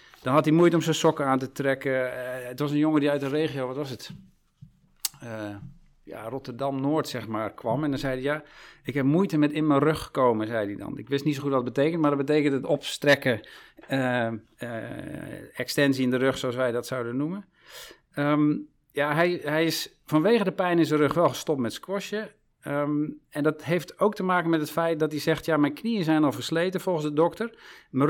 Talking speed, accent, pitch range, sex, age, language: 225 wpm, Dutch, 130-160 Hz, male, 50-69, Dutch